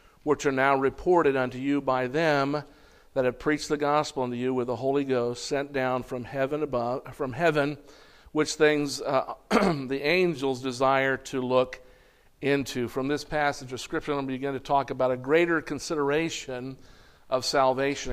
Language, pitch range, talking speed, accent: English, 125-145 Hz, 170 wpm, American